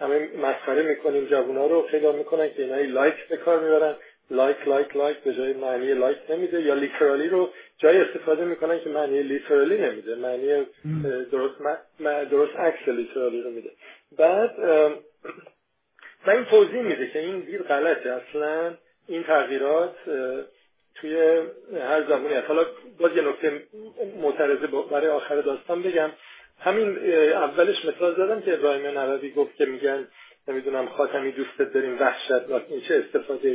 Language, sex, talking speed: Persian, male, 145 wpm